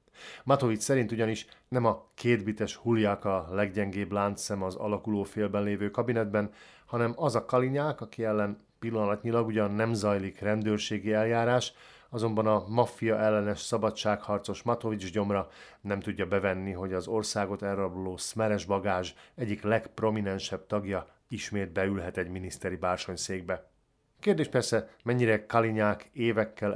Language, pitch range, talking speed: Hungarian, 100-115 Hz, 125 wpm